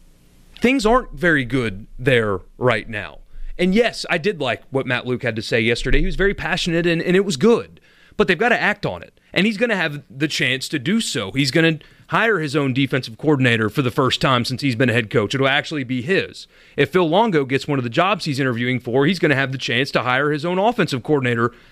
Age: 30-49